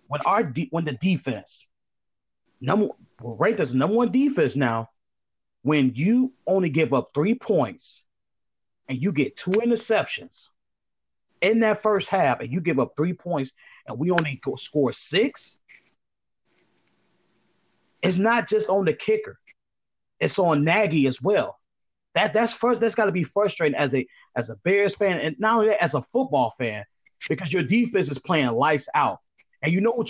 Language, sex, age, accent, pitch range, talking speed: English, male, 40-59, American, 135-185 Hz, 165 wpm